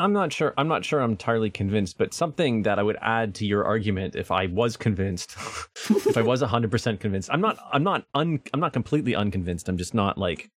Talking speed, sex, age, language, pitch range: 220 wpm, male, 30-49, English, 105-145 Hz